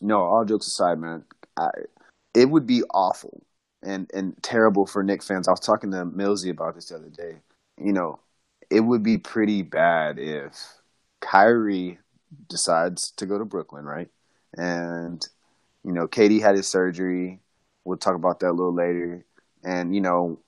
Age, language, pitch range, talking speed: 30-49, English, 95-120 Hz, 165 wpm